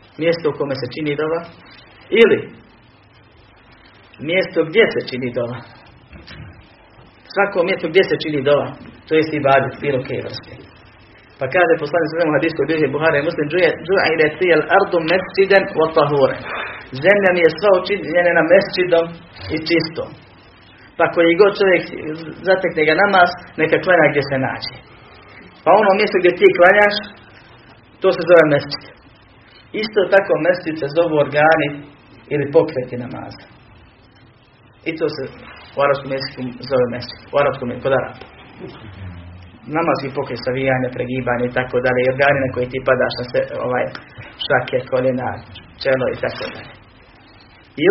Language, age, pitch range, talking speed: Croatian, 40-59, 125-175 Hz, 135 wpm